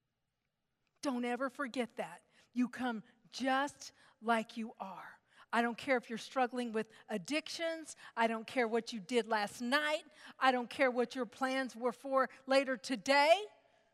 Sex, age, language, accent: female, 50-69, English, American